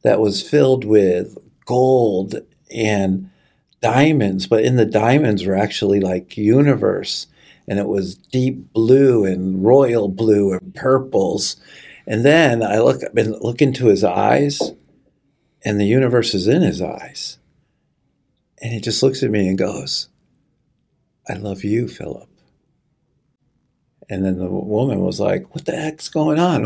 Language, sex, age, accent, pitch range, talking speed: English, male, 50-69, American, 100-140 Hz, 145 wpm